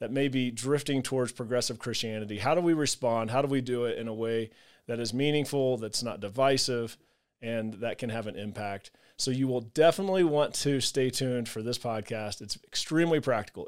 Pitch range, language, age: 115-140 Hz, English, 30-49